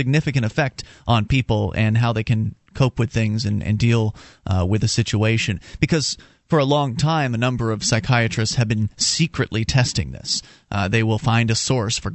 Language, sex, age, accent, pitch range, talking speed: English, male, 30-49, American, 115-160 Hz, 195 wpm